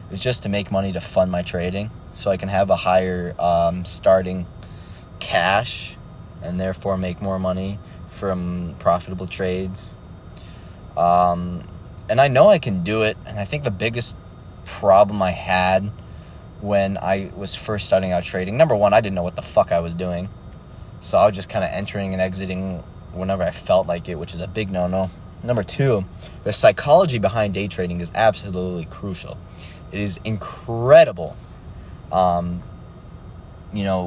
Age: 20-39